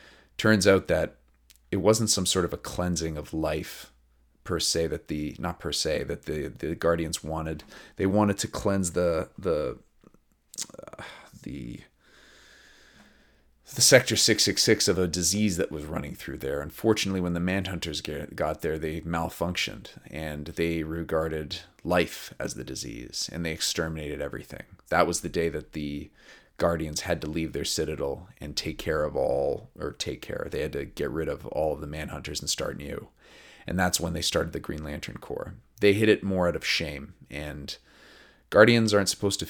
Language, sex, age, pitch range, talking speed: English, male, 30-49, 75-90 Hz, 180 wpm